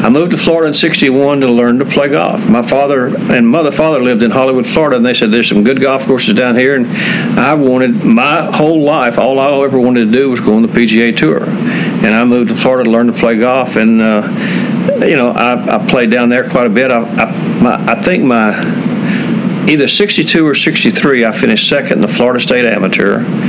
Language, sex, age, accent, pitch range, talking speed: English, male, 50-69, American, 115-145 Hz, 225 wpm